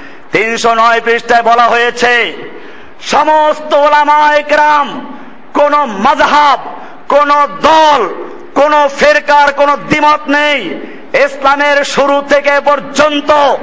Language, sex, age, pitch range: Bengali, male, 50-69, 225-290 Hz